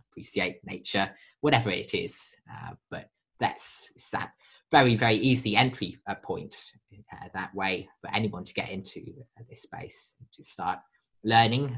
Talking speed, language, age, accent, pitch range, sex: 150 wpm, English, 20-39, British, 100-130 Hz, male